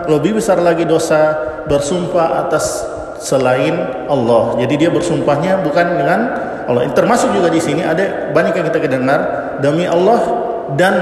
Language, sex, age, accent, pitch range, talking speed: Indonesian, male, 50-69, native, 140-205 Hz, 140 wpm